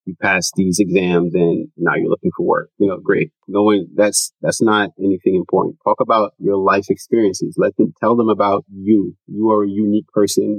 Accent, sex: American, male